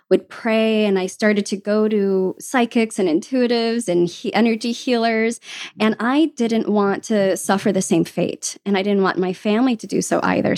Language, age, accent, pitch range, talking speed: English, 20-39, American, 185-240 Hz, 195 wpm